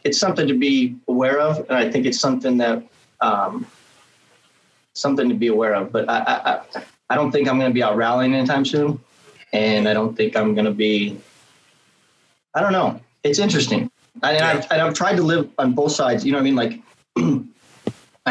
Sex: male